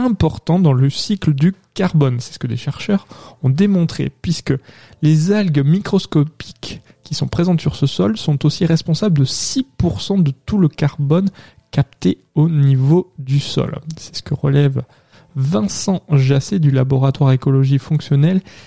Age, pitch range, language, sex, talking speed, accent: 20-39, 135-170 Hz, French, male, 150 wpm, French